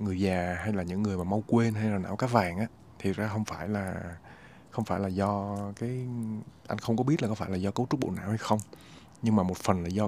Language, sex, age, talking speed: Vietnamese, male, 20-39, 275 wpm